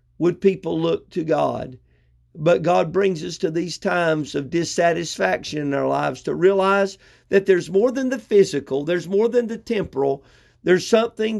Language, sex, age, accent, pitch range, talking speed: English, male, 50-69, American, 155-200 Hz, 170 wpm